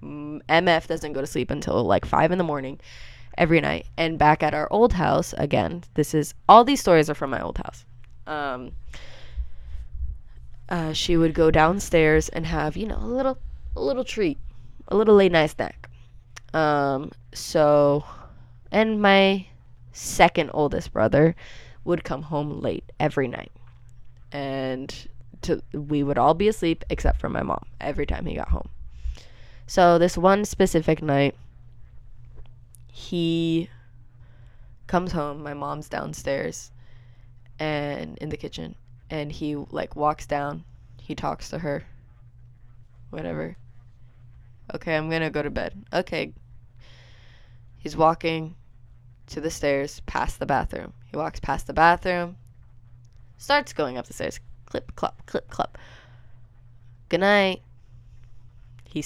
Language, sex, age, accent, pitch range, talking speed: English, female, 20-39, American, 120-160 Hz, 135 wpm